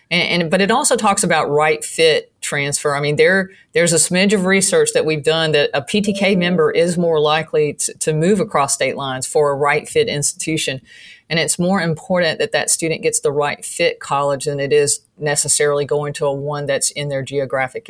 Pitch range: 145-180 Hz